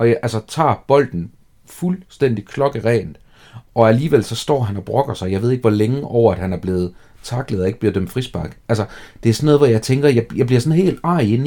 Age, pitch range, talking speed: 40-59, 105-135 Hz, 235 wpm